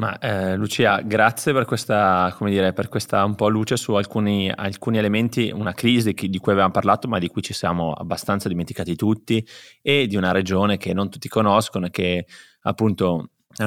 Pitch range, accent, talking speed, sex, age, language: 95-110 Hz, native, 190 wpm, male, 20-39, Italian